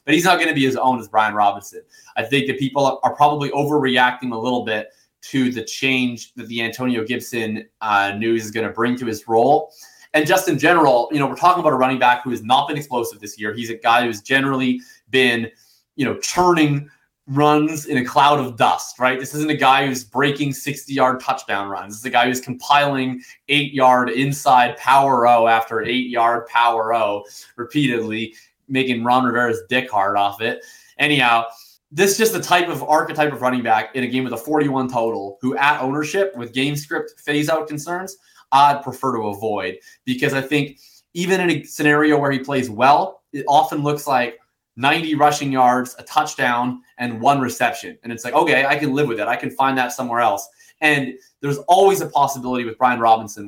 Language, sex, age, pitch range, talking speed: English, male, 20-39, 115-145 Hz, 200 wpm